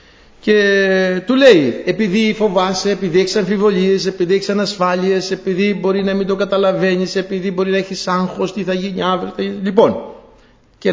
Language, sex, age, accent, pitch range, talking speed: Greek, male, 60-79, native, 125-190 Hz, 165 wpm